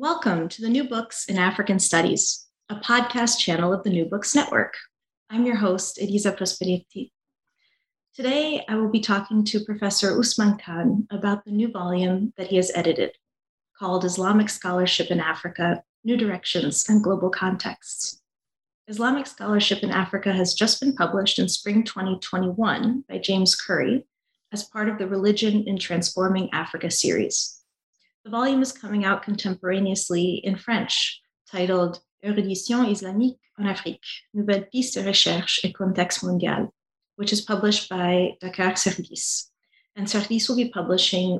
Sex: female